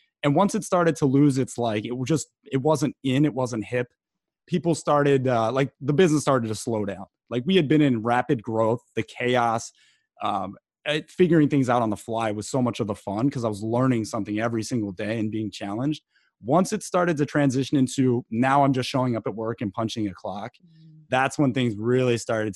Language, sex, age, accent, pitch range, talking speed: English, male, 30-49, American, 110-140 Hz, 220 wpm